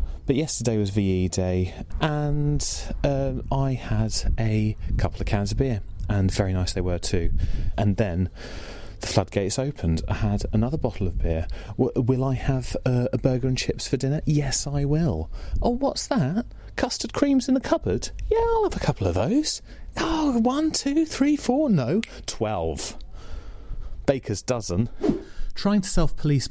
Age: 30-49